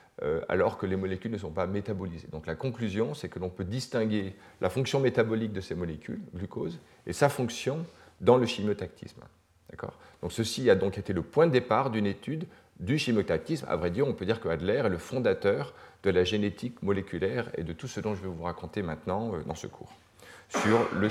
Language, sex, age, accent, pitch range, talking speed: French, male, 40-59, French, 90-115 Hz, 210 wpm